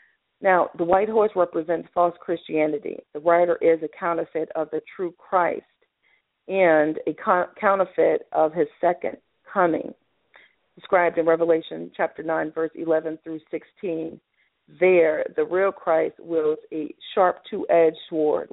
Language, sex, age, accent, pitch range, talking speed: English, female, 40-59, American, 160-190 Hz, 135 wpm